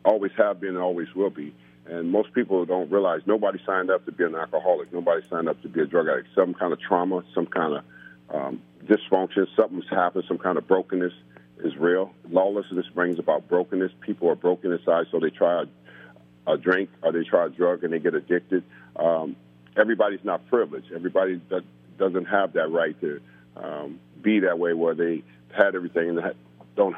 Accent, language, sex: American, English, male